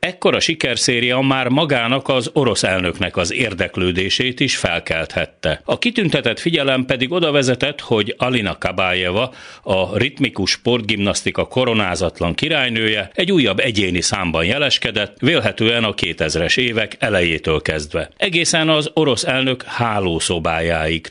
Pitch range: 90-130 Hz